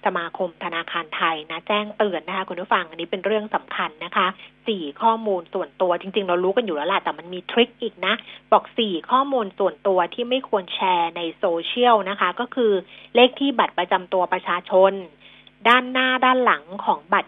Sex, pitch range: female, 180-230 Hz